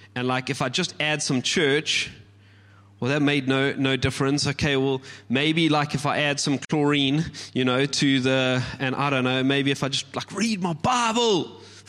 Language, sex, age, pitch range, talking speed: English, male, 30-49, 130-215 Hz, 200 wpm